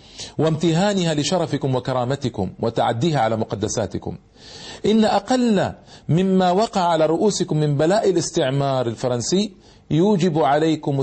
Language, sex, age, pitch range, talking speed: Arabic, male, 50-69, 120-175 Hz, 100 wpm